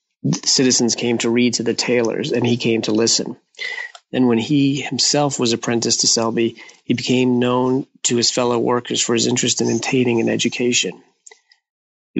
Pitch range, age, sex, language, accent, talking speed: 115-125 Hz, 40-59, male, English, American, 170 wpm